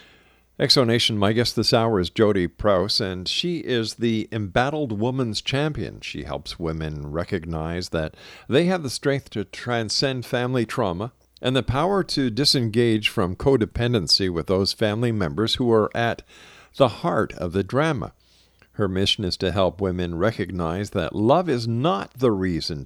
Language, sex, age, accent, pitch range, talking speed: English, male, 50-69, American, 95-125 Hz, 160 wpm